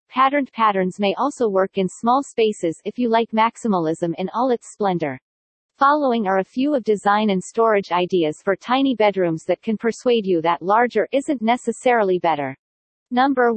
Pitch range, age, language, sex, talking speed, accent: 190-245 Hz, 40-59, English, female, 170 wpm, American